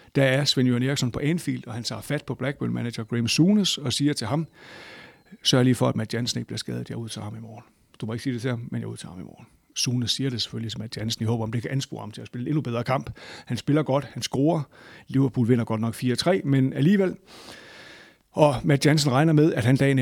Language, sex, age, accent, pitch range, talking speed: Danish, male, 60-79, native, 120-145 Hz, 265 wpm